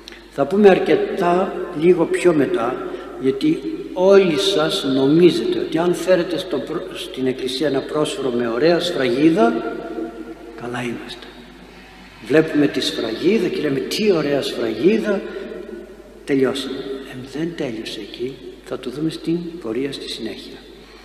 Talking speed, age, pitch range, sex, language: 120 wpm, 60-79, 130-185 Hz, male, Greek